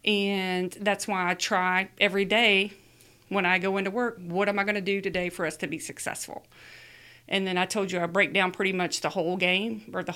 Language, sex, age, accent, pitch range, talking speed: English, female, 40-59, American, 180-210 Hz, 230 wpm